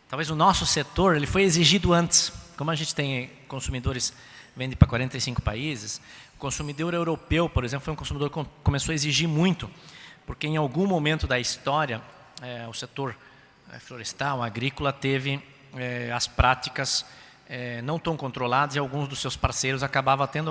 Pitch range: 120-150 Hz